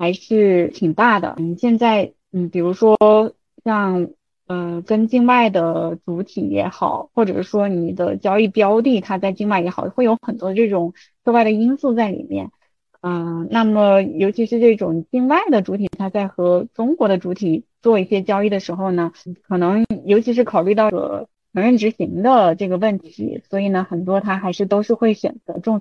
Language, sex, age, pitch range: Chinese, female, 20-39, 180-230 Hz